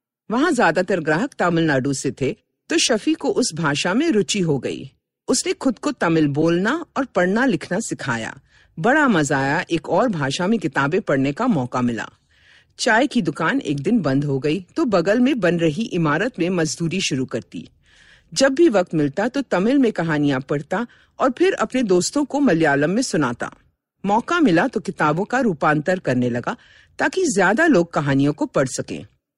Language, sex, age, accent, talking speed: Hindi, female, 50-69, native, 175 wpm